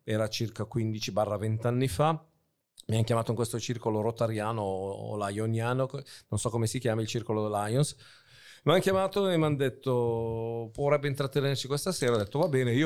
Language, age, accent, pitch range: Italian, 40-59, native, 110-140 Hz